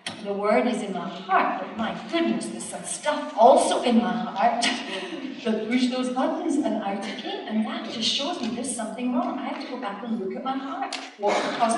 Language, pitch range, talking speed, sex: English, 205-260 Hz, 215 wpm, female